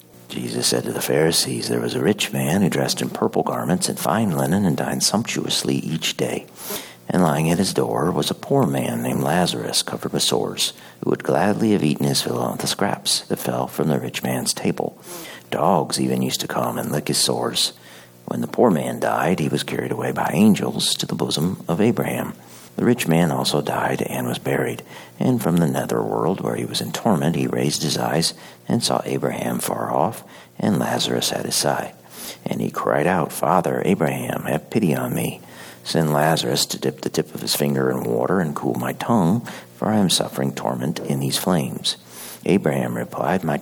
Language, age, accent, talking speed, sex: English, 50-69, American, 200 wpm, male